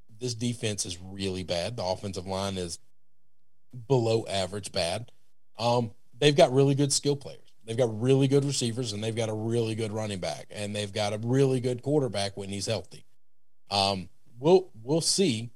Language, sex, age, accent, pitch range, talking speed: English, male, 40-59, American, 100-130 Hz, 175 wpm